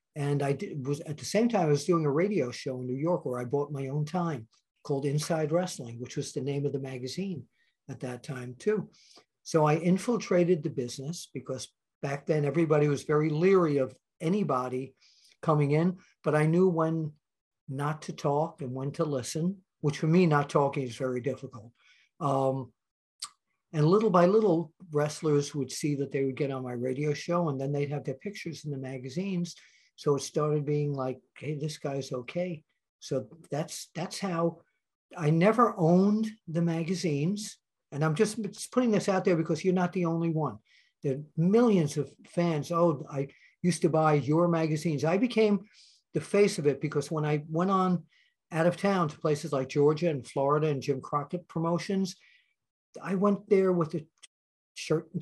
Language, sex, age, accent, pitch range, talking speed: Spanish, male, 50-69, American, 140-175 Hz, 185 wpm